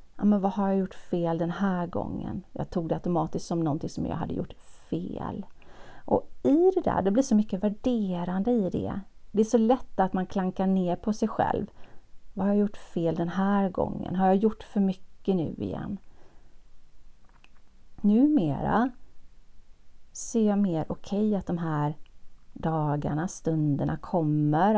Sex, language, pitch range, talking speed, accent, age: female, Swedish, 165-215 Hz, 160 wpm, native, 30-49